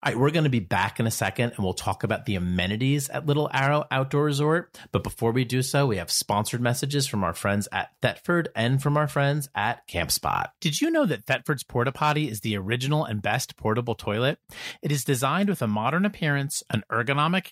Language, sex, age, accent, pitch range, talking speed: English, male, 40-59, American, 115-170 Hz, 225 wpm